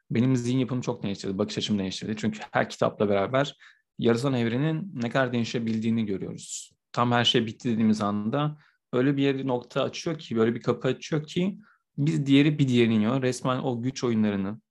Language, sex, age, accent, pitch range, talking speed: Turkish, male, 30-49, native, 110-125 Hz, 170 wpm